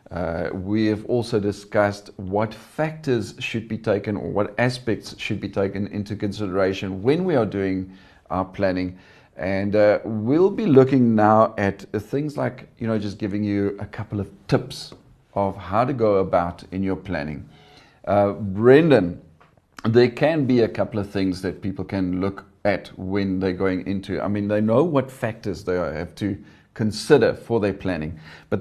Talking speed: 170 wpm